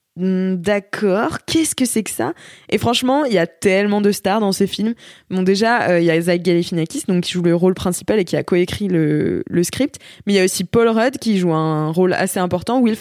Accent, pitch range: French, 175-230 Hz